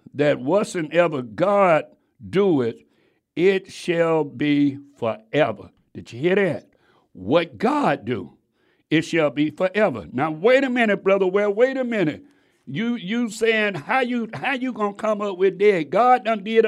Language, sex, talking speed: English, male, 160 wpm